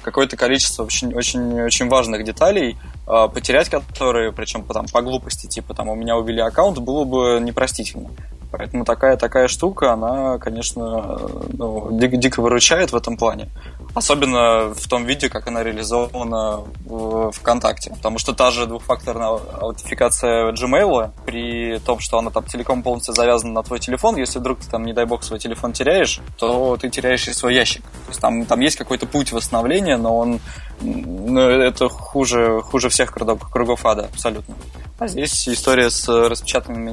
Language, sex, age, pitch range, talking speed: Russian, male, 20-39, 115-125 Hz, 160 wpm